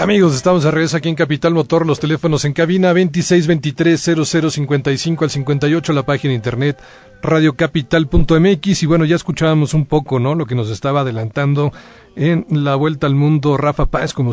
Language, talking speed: English, 175 wpm